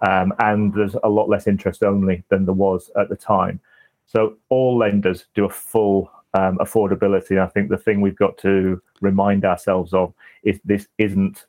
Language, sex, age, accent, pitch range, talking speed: English, male, 30-49, British, 95-105 Hz, 185 wpm